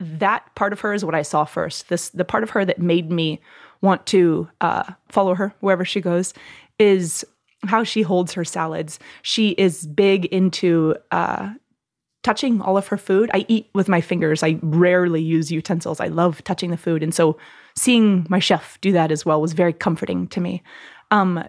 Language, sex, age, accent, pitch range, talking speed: English, female, 20-39, American, 170-215 Hz, 195 wpm